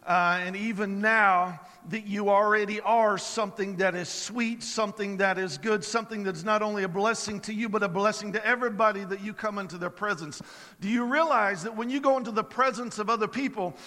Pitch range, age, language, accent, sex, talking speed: 215-270 Hz, 50-69, English, American, male, 210 wpm